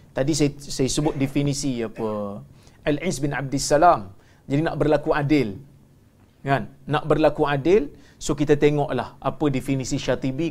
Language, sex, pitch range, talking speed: Malayalam, male, 135-175 Hz, 130 wpm